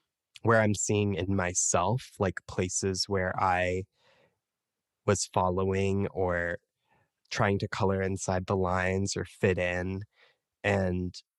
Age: 20-39